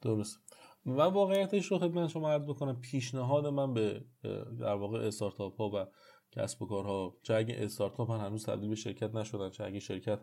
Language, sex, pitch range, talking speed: Persian, male, 105-130 Hz, 190 wpm